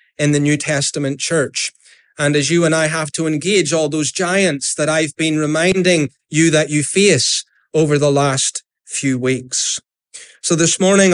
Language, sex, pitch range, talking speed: English, male, 150-190 Hz, 170 wpm